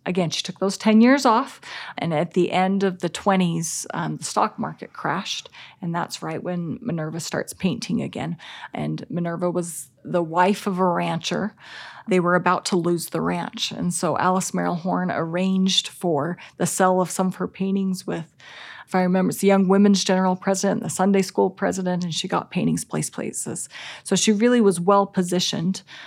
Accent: American